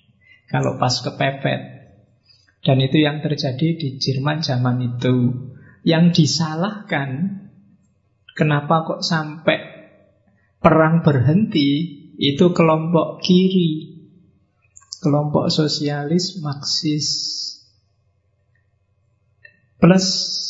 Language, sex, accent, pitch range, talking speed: Indonesian, male, native, 120-150 Hz, 75 wpm